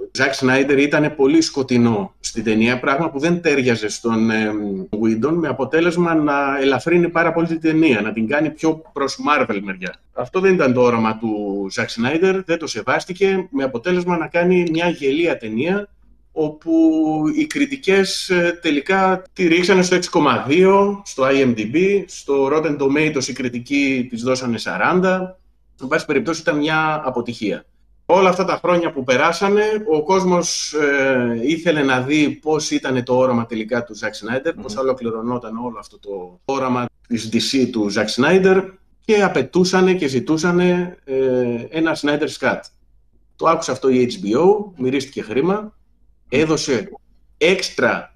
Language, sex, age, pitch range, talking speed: Greek, male, 30-49, 120-175 Hz, 150 wpm